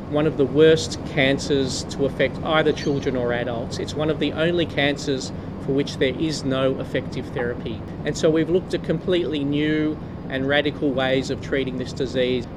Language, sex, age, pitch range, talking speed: Tamil, male, 40-59, 130-165 Hz, 180 wpm